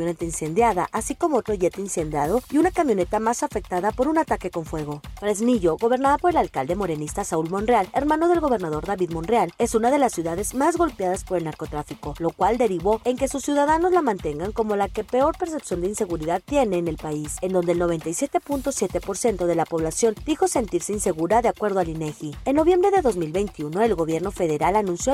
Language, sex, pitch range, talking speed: Spanish, female, 175-265 Hz, 195 wpm